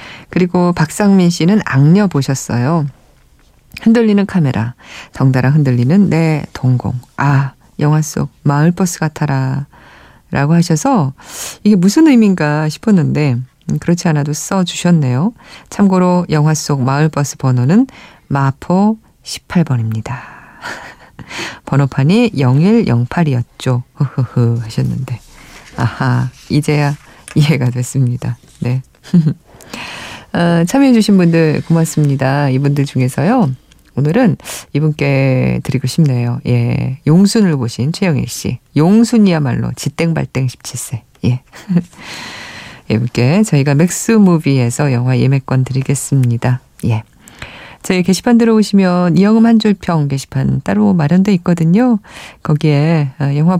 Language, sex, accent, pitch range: Korean, female, native, 130-180 Hz